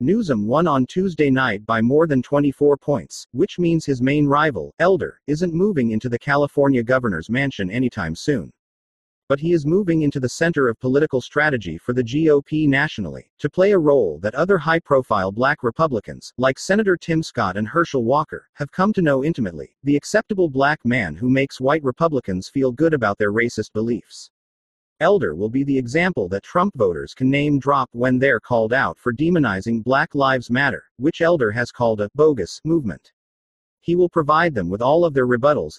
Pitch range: 115-155 Hz